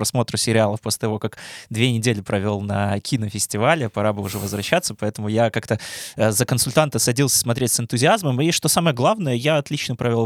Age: 20-39